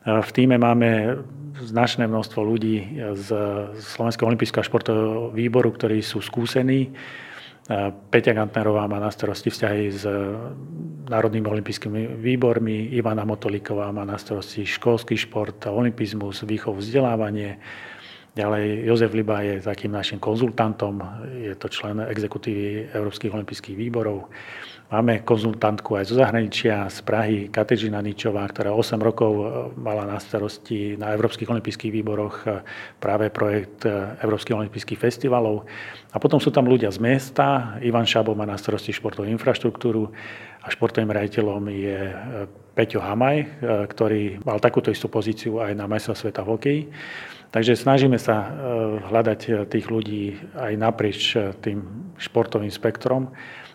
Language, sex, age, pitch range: Slovak, male, 40-59, 105-115 Hz